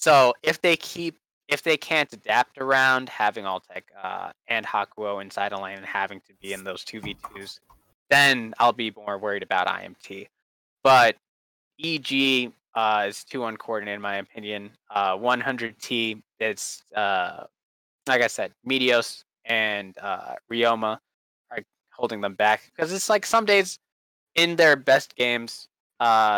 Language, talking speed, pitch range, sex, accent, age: English, 150 wpm, 105-140 Hz, male, American, 20-39